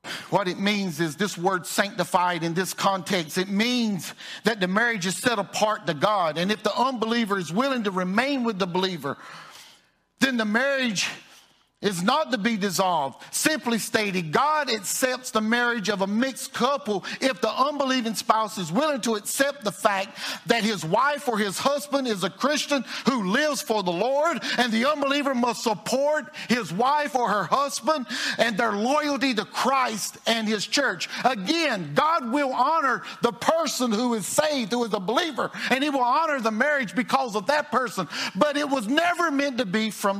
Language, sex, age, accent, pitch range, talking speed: English, male, 50-69, American, 175-255 Hz, 180 wpm